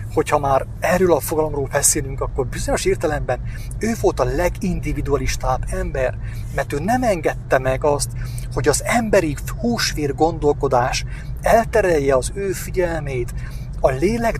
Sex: male